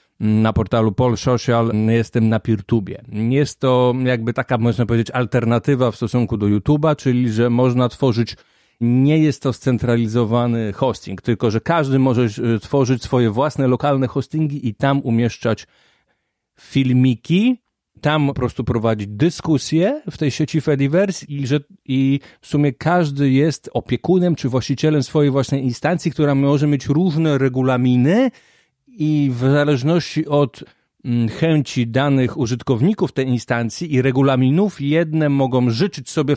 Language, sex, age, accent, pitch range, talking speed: Polish, male, 30-49, native, 125-155 Hz, 135 wpm